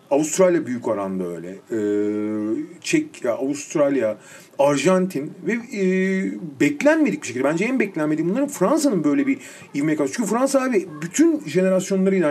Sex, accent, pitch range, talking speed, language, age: male, native, 160-235 Hz, 130 wpm, Turkish, 40-59